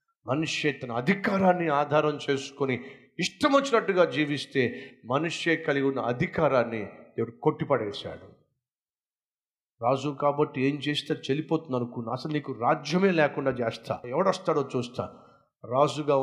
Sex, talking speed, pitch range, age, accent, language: male, 70 wpm, 125-160 Hz, 50-69, native, Telugu